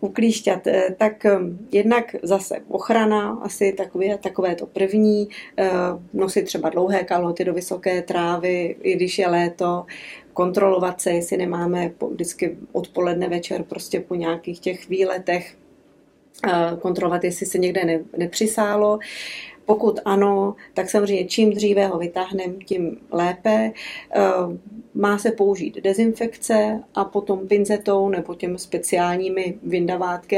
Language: Czech